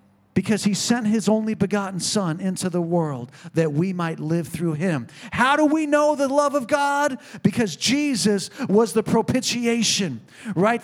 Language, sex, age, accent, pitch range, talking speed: English, male, 40-59, American, 150-210 Hz, 165 wpm